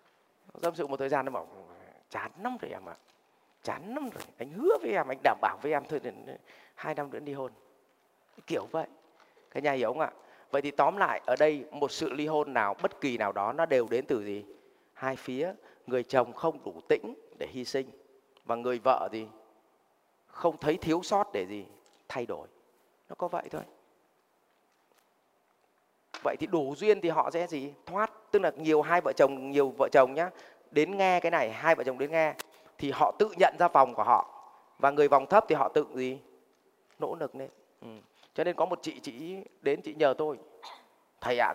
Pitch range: 135-190 Hz